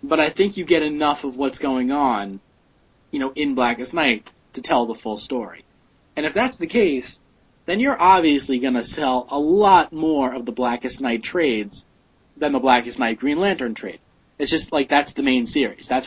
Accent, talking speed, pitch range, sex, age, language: American, 200 wpm, 125-160 Hz, male, 30-49, English